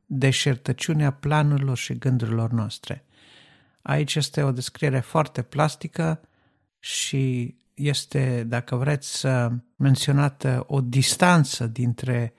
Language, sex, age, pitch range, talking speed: Romanian, male, 50-69, 125-155 Hz, 90 wpm